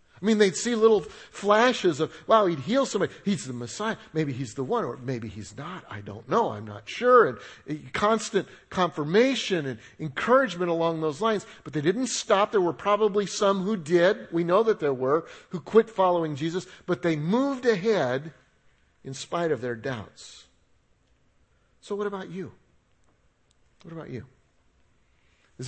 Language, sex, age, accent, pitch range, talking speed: English, male, 50-69, American, 140-205 Hz, 170 wpm